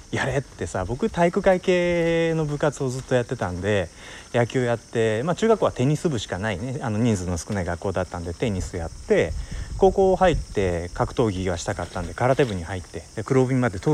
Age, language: 30-49, Japanese